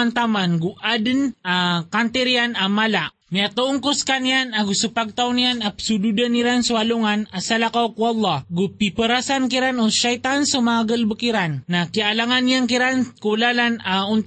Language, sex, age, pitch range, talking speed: Filipino, male, 20-39, 205-250 Hz, 140 wpm